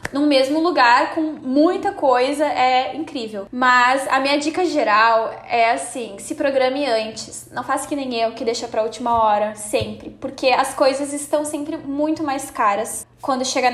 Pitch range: 250-300 Hz